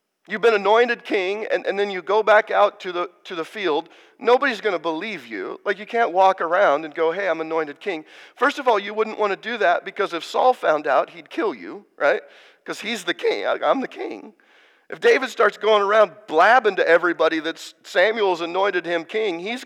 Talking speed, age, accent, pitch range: 215 wpm, 50-69, American, 175-265 Hz